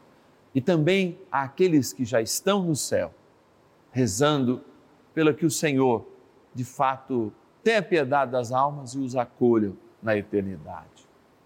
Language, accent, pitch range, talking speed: Portuguese, Brazilian, 140-225 Hz, 130 wpm